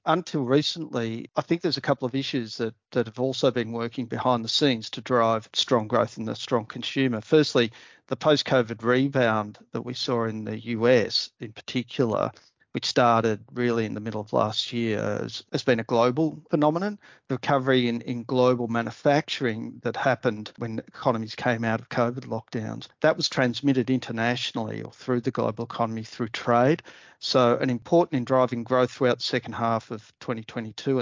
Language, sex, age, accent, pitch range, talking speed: English, male, 40-59, Australian, 115-135 Hz, 175 wpm